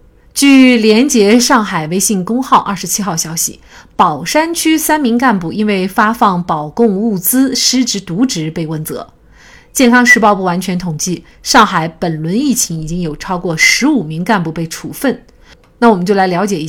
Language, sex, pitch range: Chinese, female, 180-250 Hz